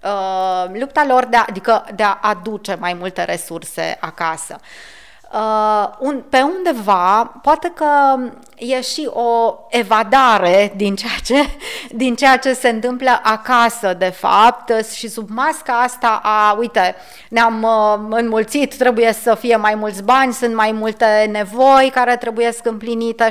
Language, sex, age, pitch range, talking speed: Romanian, female, 20-39, 205-255 Hz, 145 wpm